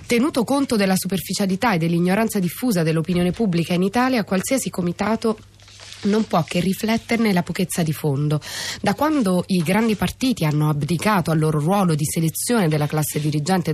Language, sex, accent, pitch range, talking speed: Italian, female, native, 155-195 Hz, 155 wpm